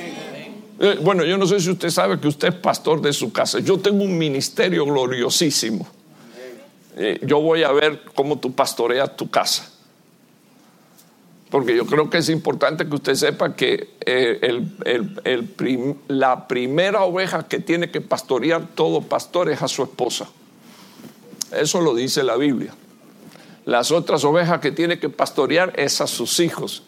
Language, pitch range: English, 165-270 Hz